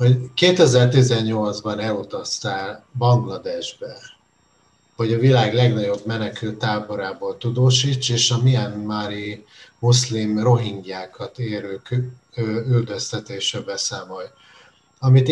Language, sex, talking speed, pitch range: Hungarian, male, 80 wpm, 105-125 Hz